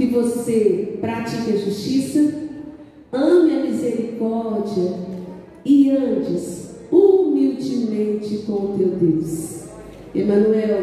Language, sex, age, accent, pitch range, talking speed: Portuguese, female, 40-59, Brazilian, 205-265 Hz, 90 wpm